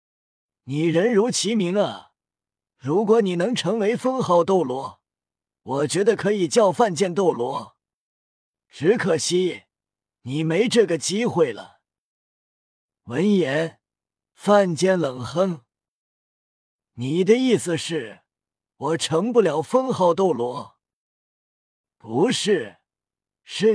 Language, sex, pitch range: Chinese, male, 155-215 Hz